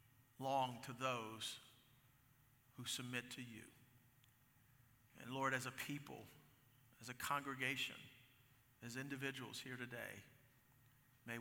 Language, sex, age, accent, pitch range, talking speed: English, male, 50-69, American, 115-130 Hz, 105 wpm